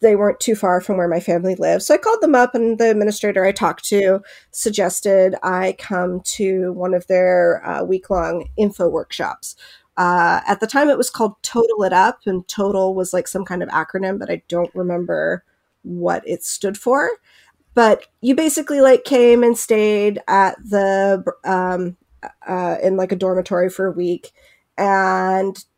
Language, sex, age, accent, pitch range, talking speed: English, female, 40-59, American, 180-225 Hz, 180 wpm